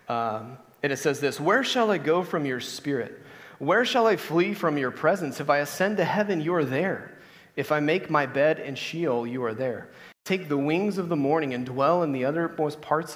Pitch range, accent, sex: 130-160 Hz, American, male